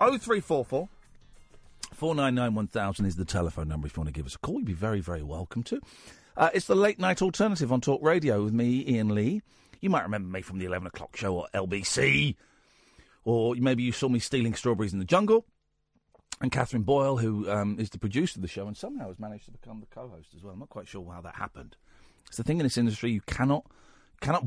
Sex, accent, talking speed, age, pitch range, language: male, British, 220 wpm, 40-59, 95-145 Hz, English